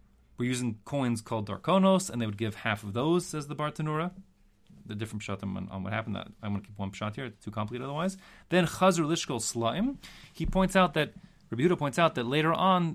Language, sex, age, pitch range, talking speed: English, male, 30-49, 105-150 Hz, 215 wpm